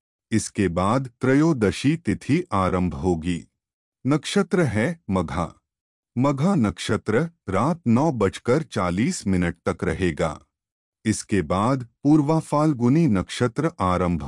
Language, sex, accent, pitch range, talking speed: Hindi, male, native, 90-150 Hz, 95 wpm